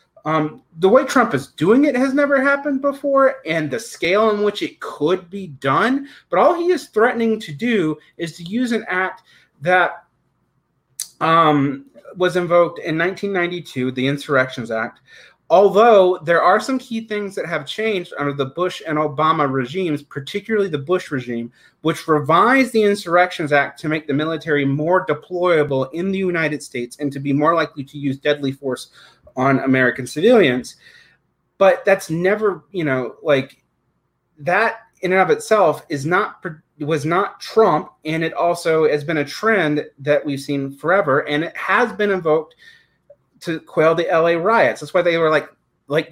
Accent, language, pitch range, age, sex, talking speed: American, English, 145-195 Hz, 30-49, male, 170 wpm